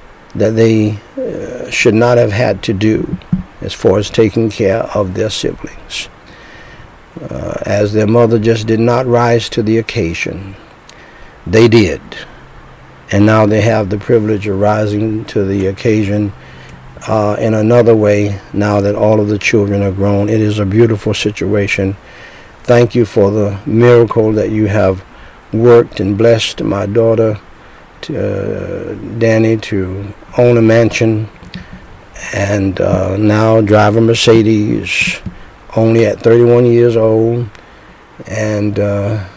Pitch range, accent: 105-115 Hz, American